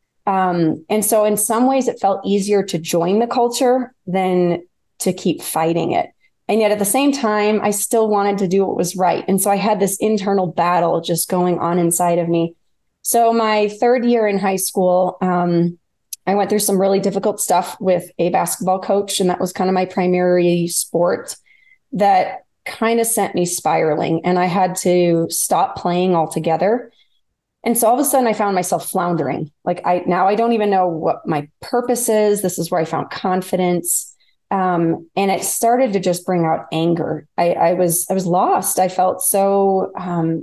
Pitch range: 175-205 Hz